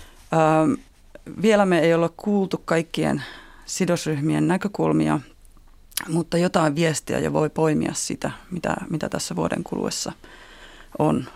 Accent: native